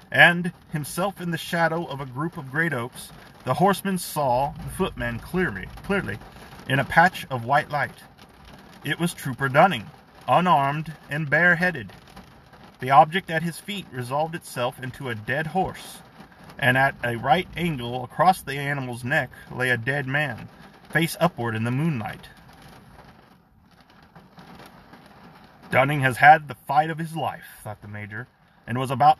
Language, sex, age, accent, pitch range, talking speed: English, male, 40-59, American, 125-165 Hz, 150 wpm